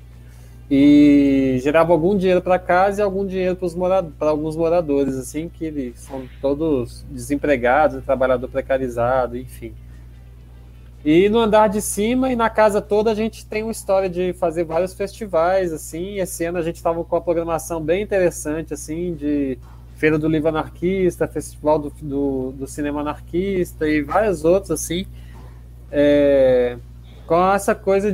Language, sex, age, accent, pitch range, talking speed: Portuguese, male, 20-39, Brazilian, 125-170 Hz, 155 wpm